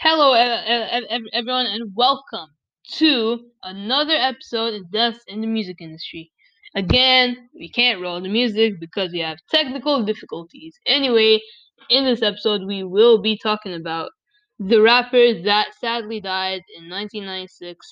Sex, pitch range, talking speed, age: female, 205-255 Hz, 135 wpm, 10-29